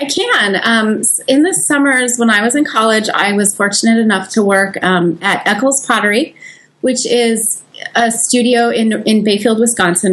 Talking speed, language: 170 wpm, English